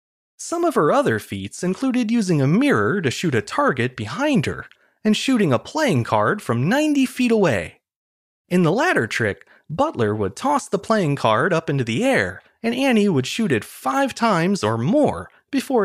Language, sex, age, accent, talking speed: English, male, 30-49, American, 180 wpm